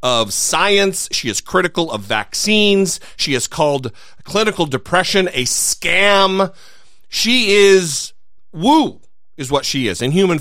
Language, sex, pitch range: English, male, 140-205 Hz